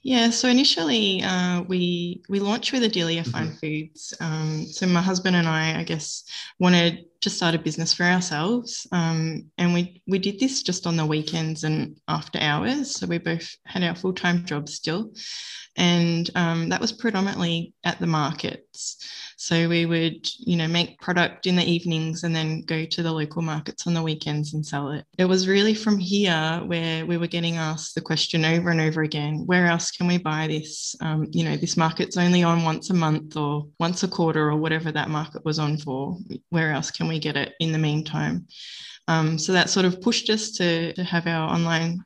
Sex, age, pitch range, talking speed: female, 20-39, 155-180 Hz, 205 wpm